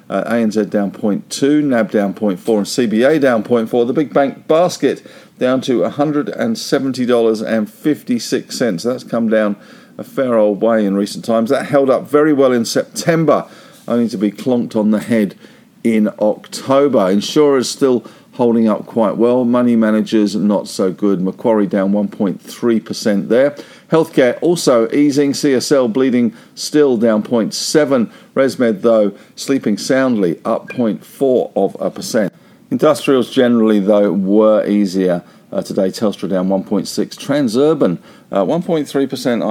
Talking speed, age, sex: 135 wpm, 50-69, male